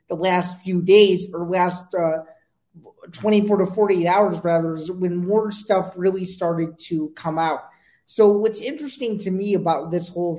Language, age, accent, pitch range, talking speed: English, 20-39, American, 175-200 Hz, 170 wpm